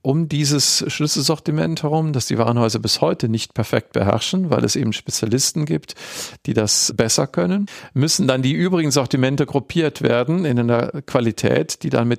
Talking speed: 165 wpm